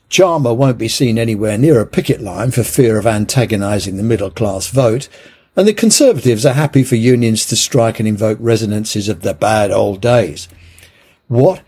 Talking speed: 175 wpm